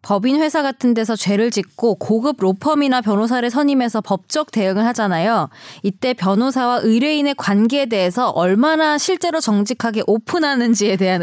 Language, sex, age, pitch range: Korean, female, 20-39, 190-255 Hz